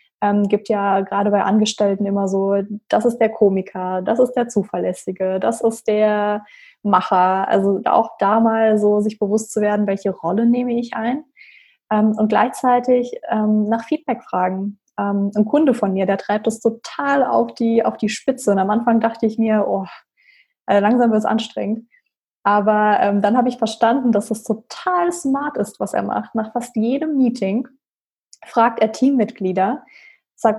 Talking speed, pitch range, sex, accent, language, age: 175 wpm, 205-240 Hz, female, German, German, 20-39